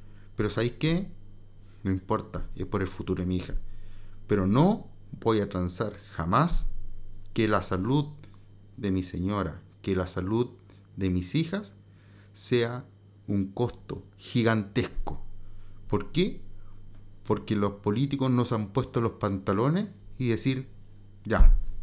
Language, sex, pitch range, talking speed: Spanish, male, 100-115 Hz, 130 wpm